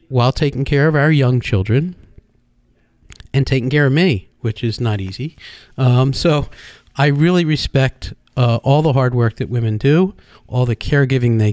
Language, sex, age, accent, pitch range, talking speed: English, male, 40-59, American, 115-145 Hz, 170 wpm